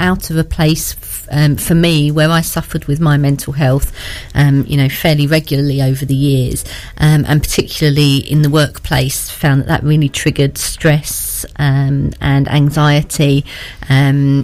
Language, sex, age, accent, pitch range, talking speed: English, female, 40-59, British, 135-160 Hz, 160 wpm